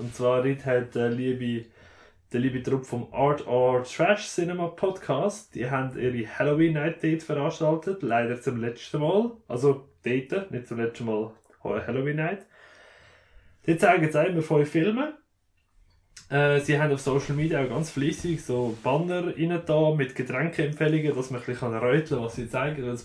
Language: German